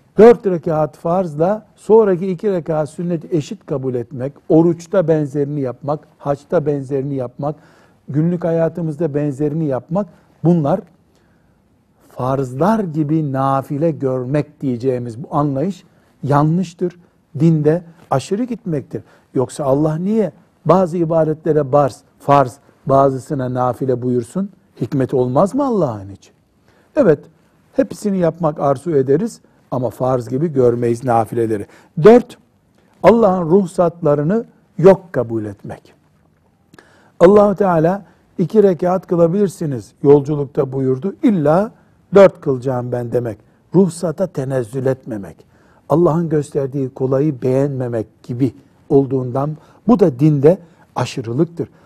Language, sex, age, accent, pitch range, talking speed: Turkish, male, 60-79, native, 135-180 Hz, 100 wpm